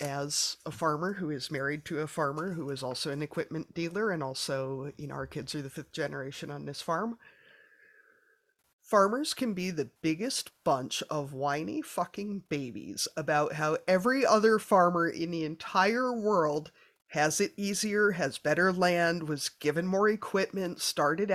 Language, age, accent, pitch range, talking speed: English, 30-49, American, 155-210 Hz, 165 wpm